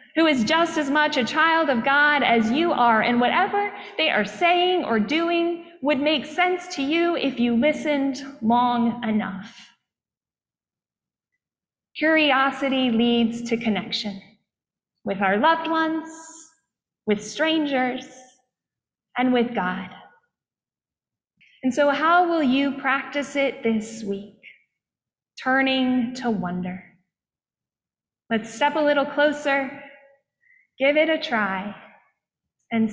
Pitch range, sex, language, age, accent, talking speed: 240-325 Hz, female, English, 20-39, American, 115 wpm